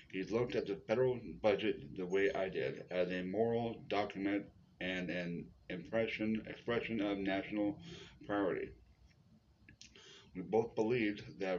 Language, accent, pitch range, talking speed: English, American, 95-110 Hz, 130 wpm